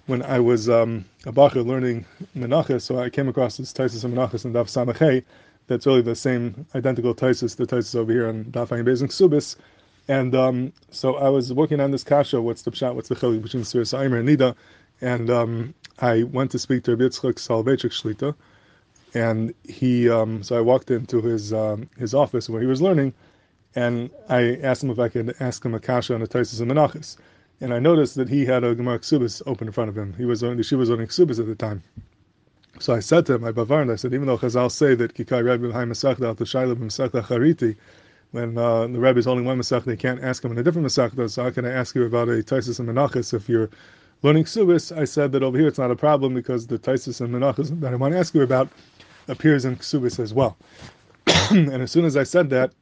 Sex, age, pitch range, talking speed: male, 20-39, 120-135 Hz, 230 wpm